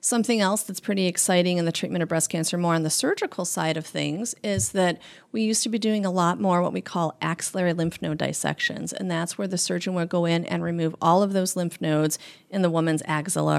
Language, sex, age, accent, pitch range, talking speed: English, female, 40-59, American, 155-195 Hz, 240 wpm